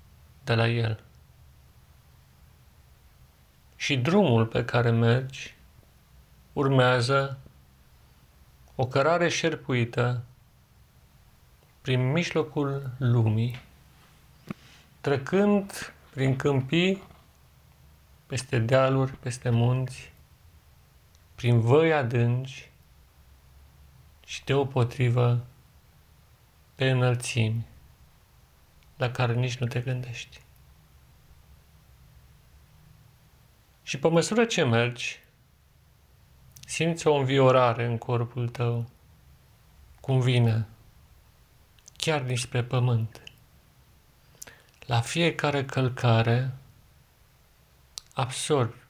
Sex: male